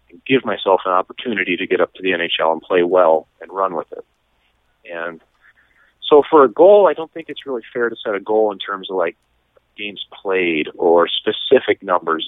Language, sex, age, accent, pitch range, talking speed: English, male, 40-59, American, 90-125 Hz, 200 wpm